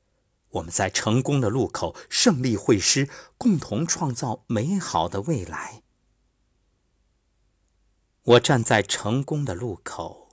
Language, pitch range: Chinese, 95-155 Hz